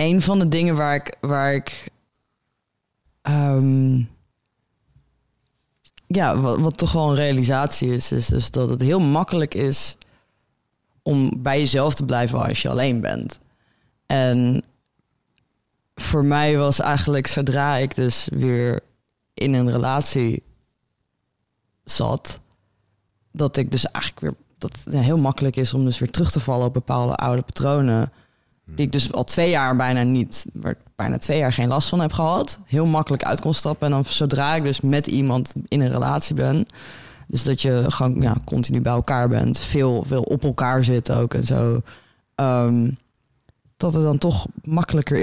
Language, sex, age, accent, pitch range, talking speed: Dutch, female, 20-39, Dutch, 120-145 Hz, 165 wpm